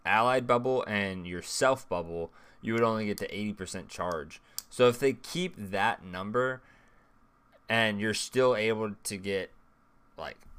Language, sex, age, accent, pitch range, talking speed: English, male, 20-39, American, 95-125 Hz, 155 wpm